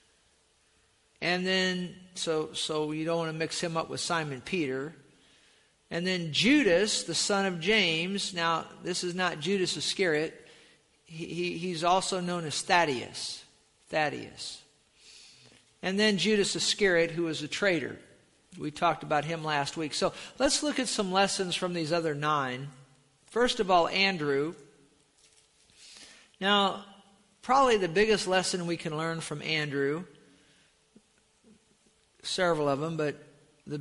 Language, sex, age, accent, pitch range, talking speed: English, male, 50-69, American, 150-190 Hz, 135 wpm